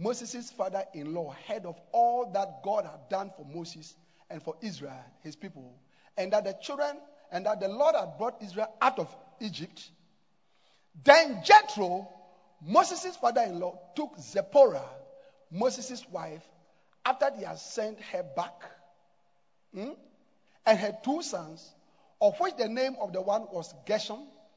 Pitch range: 175-245 Hz